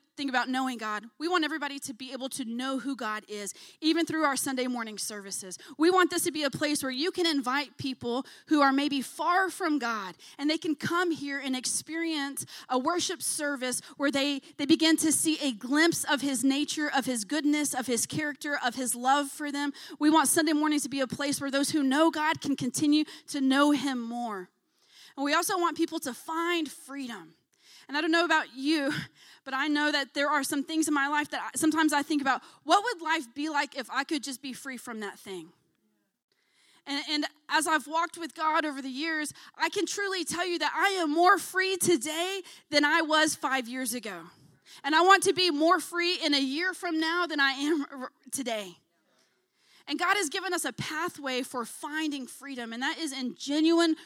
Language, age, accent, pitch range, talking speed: English, 30-49, American, 265-325 Hz, 215 wpm